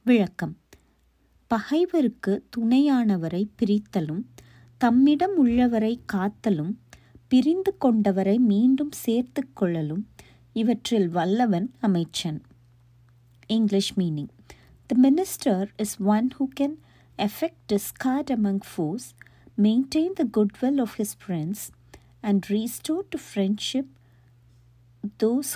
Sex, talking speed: female, 90 wpm